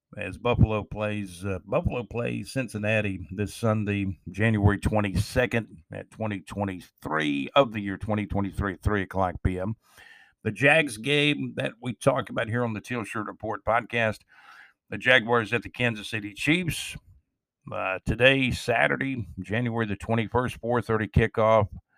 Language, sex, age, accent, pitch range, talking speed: English, male, 50-69, American, 100-125 Hz, 135 wpm